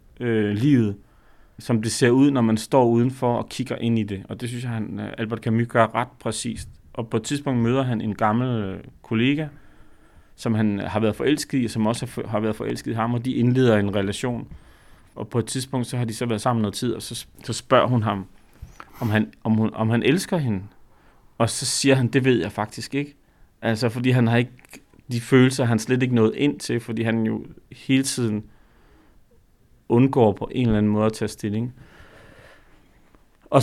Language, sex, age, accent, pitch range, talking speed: Danish, male, 30-49, native, 110-130 Hz, 205 wpm